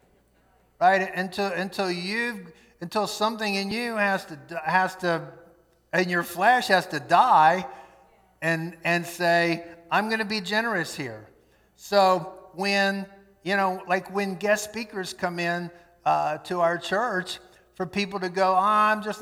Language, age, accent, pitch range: English, 50-69, American, 165-195 Hz